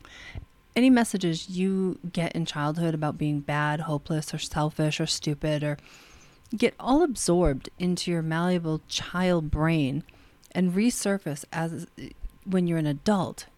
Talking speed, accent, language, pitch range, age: 135 wpm, American, English, 155-200 Hz, 40-59